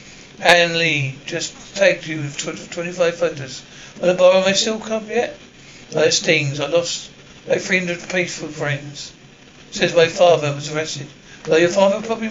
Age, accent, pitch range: 60-79, British, 150-190 Hz